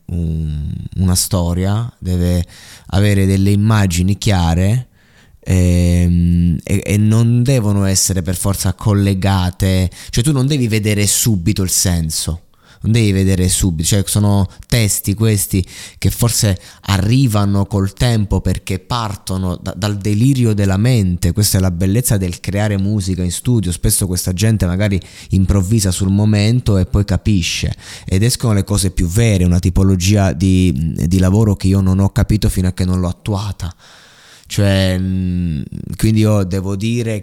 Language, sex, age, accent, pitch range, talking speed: Italian, male, 20-39, native, 95-105 Hz, 145 wpm